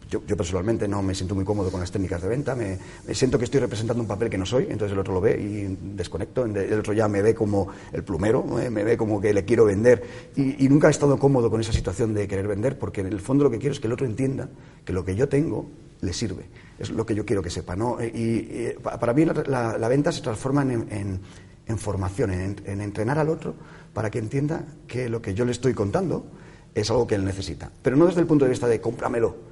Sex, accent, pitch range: male, Spanish, 100-135 Hz